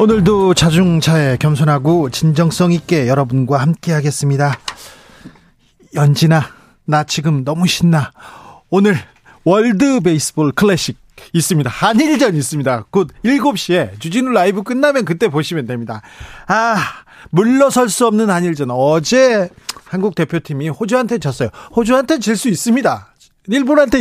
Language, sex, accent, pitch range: Korean, male, native, 145-210 Hz